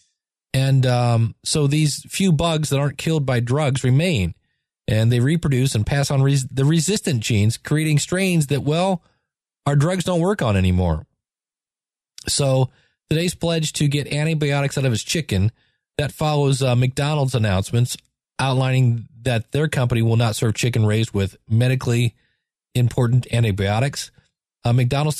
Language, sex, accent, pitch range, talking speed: English, male, American, 120-150 Hz, 145 wpm